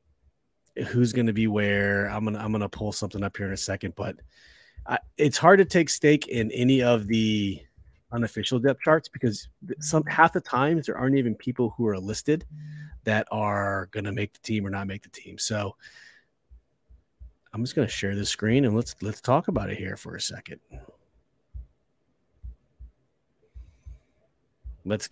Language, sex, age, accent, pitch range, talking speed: English, male, 30-49, American, 100-140 Hz, 175 wpm